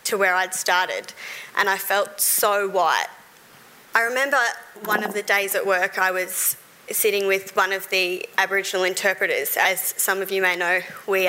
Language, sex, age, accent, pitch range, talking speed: English, female, 20-39, Australian, 190-230 Hz, 175 wpm